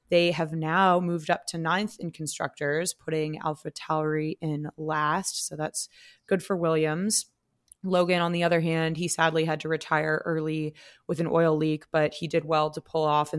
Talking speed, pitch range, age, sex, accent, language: 190 wpm, 150-180 Hz, 20-39, female, American, English